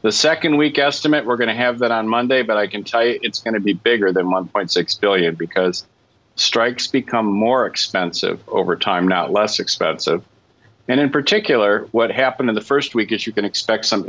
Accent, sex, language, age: American, male, English, 50-69